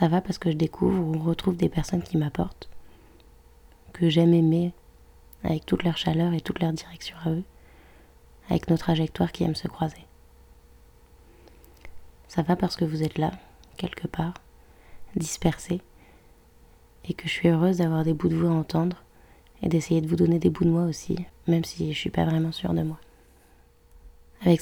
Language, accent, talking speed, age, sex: French, French, 180 wpm, 20-39, female